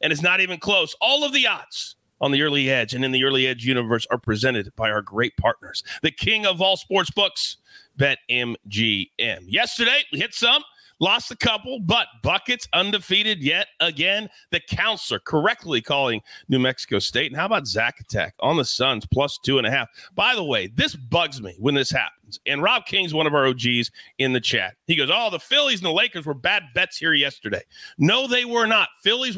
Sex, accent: male, American